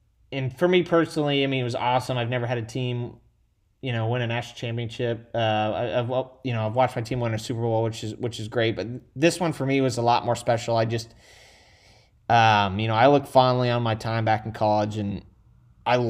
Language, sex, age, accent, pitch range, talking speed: English, male, 20-39, American, 110-135 Hz, 240 wpm